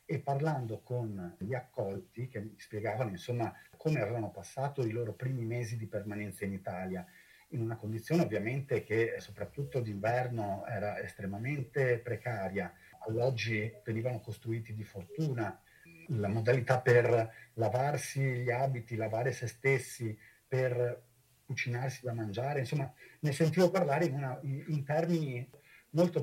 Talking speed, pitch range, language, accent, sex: 130 wpm, 120-160 Hz, Italian, native, male